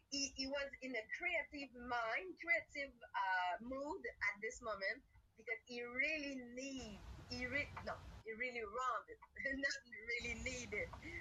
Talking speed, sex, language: 135 wpm, female, English